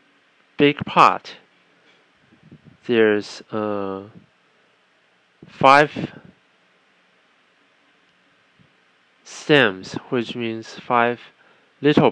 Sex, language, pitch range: male, Chinese, 105-135 Hz